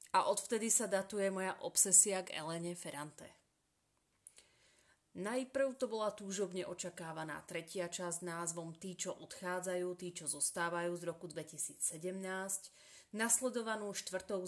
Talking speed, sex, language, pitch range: 120 wpm, female, Slovak, 175-200 Hz